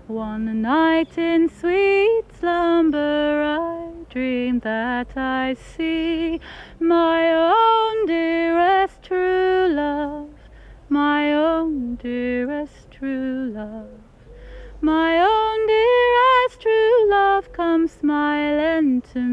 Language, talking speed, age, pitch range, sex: English, 85 wpm, 30-49, 260-340 Hz, female